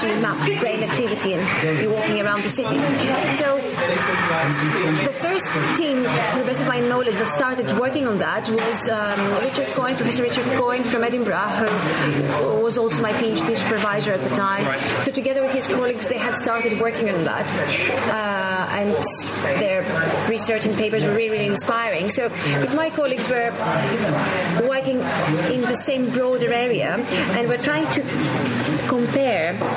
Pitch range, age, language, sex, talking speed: 210-255 Hz, 30-49, English, female, 160 wpm